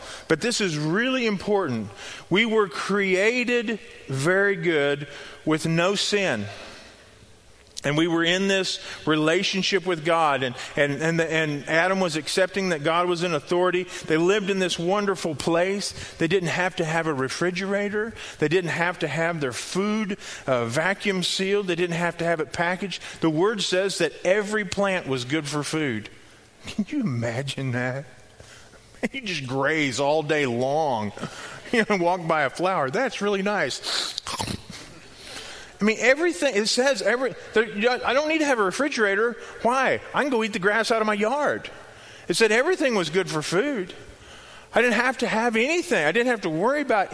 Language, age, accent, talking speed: English, 40-59, American, 170 wpm